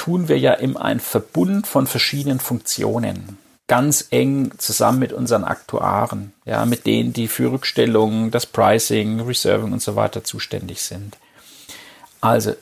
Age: 40-59